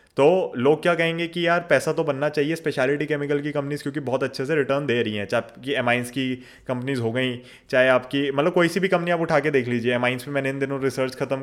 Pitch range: 130-155 Hz